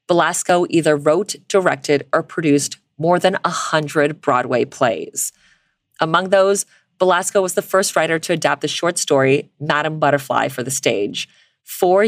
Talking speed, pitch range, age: 150 wpm, 145-180 Hz, 30-49